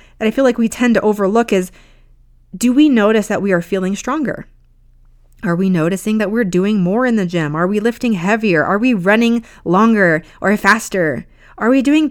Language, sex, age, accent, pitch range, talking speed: English, female, 30-49, American, 165-225 Hz, 200 wpm